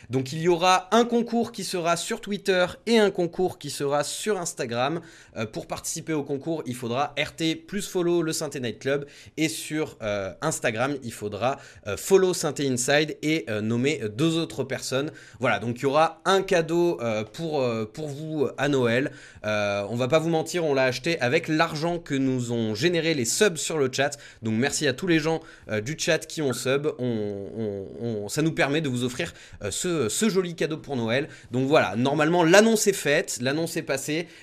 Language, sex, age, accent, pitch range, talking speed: French, male, 20-39, French, 125-170 Hz, 205 wpm